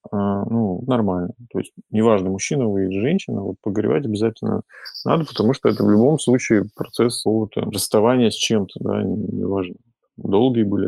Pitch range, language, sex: 100-120 Hz, Russian, male